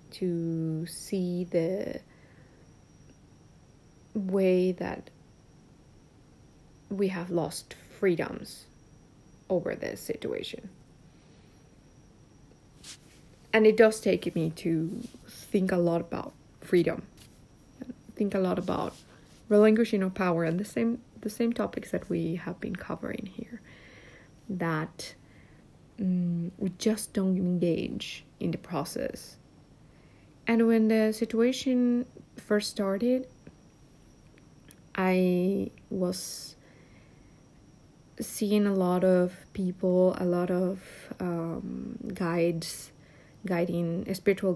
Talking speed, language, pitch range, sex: 95 wpm, English, 175-215 Hz, female